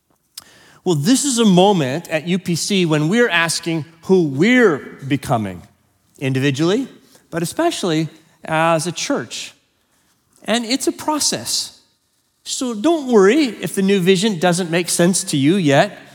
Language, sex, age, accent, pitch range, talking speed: English, male, 40-59, American, 155-205 Hz, 135 wpm